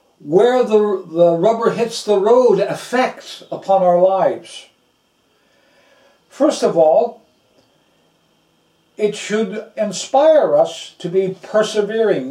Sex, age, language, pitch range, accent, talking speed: male, 60-79, English, 160-220 Hz, American, 100 wpm